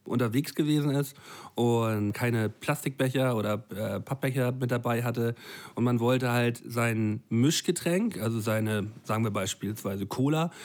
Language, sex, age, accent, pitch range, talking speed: German, male, 40-59, German, 115-135 Hz, 135 wpm